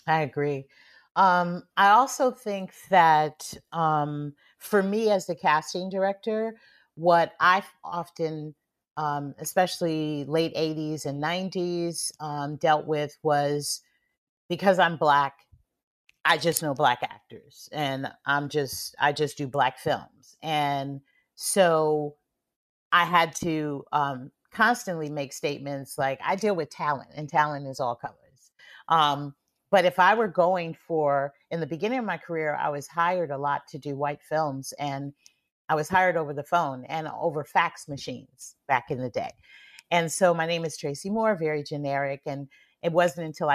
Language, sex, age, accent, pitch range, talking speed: English, female, 40-59, American, 145-180 Hz, 155 wpm